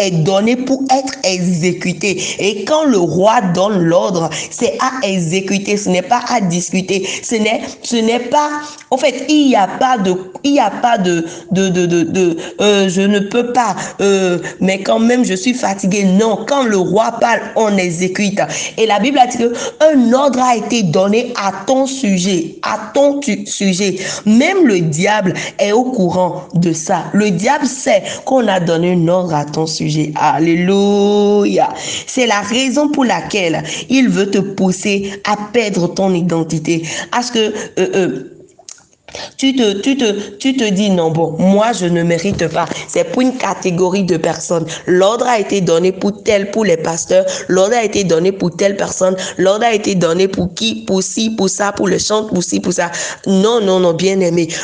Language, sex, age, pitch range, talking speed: French, female, 40-59, 185-240 Hz, 190 wpm